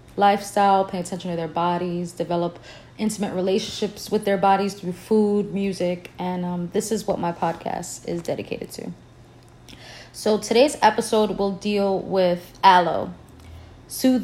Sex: female